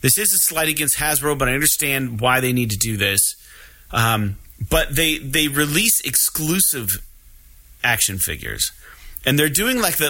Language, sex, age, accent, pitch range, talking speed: English, male, 30-49, American, 100-135 Hz, 165 wpm